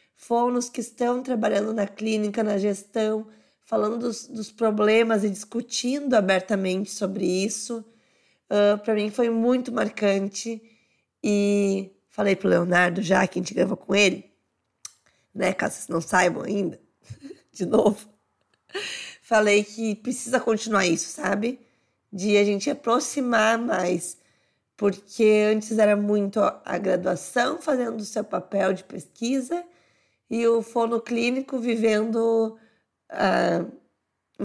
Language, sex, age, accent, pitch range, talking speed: Portuguese, female, 20-39, Brazilian, 200-235 Hz, 125 wpm